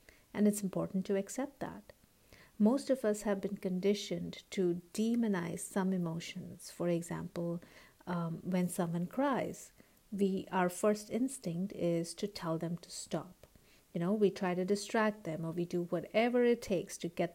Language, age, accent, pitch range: English, 50-69, Indian, 175-210 Hz